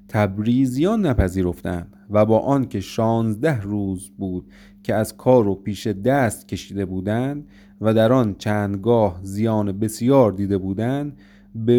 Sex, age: male, 30-49